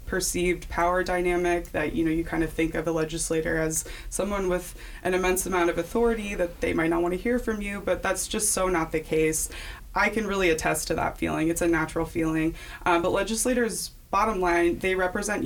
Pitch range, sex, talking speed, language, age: 160-180 Hz, female, 215 wpm, English, 20-39